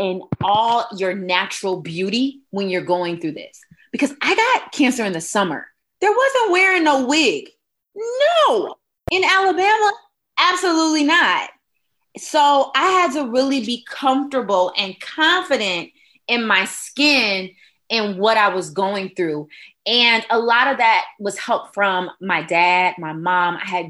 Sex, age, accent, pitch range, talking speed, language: female, 20-39, American, 185-270 Hz, 150 wpm, English